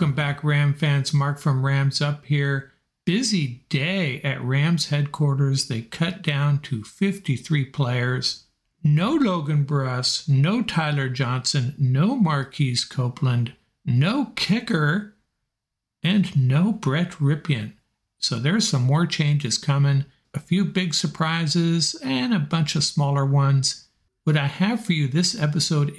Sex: male